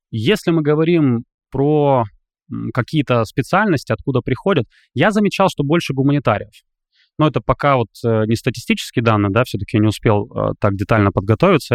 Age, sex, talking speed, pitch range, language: 20-39, male, 145 wpm, 110-135 Hz, Russian